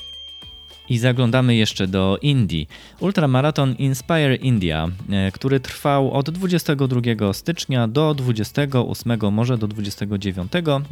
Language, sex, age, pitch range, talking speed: Polish, male, 20-39, 95-130 Hz, 100 wpm